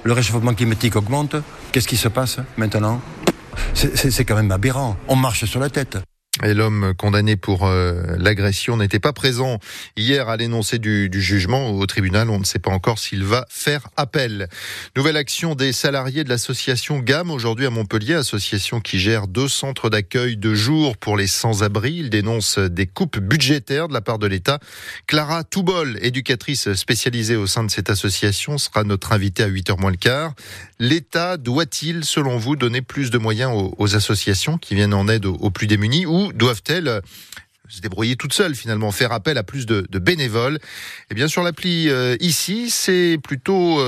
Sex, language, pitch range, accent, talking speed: male, French, 105-140 Hz, French, 180 wpm